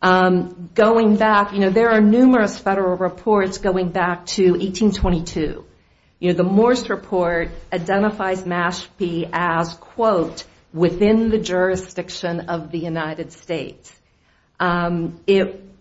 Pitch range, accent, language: 170-195 Hz, American, English